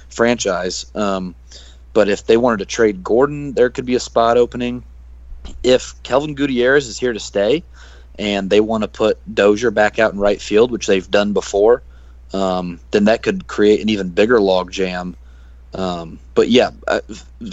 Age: 30-49